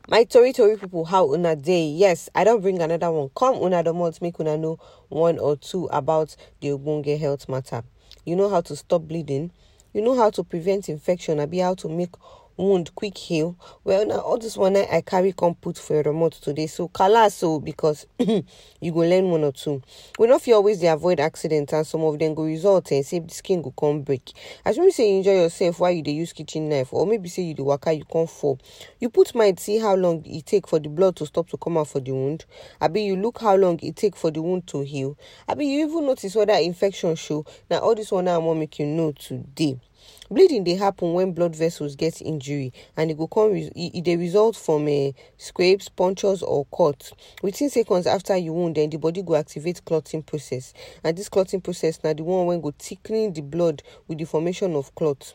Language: English